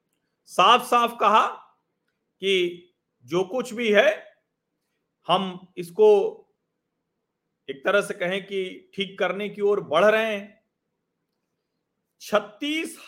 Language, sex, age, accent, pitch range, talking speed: Hindi, male, 40-59, native, 170-230 Hz, 105 wpm